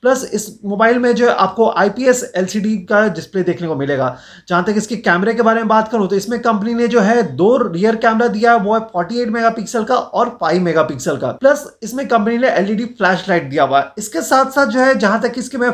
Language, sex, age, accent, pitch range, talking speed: Hindi, male, 30-49, native, 200-235 Hz, 105 wpm